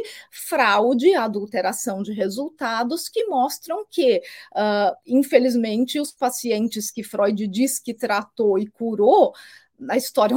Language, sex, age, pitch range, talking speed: Portuguese, female, 30-49, 215-355 Hz, 110 wpm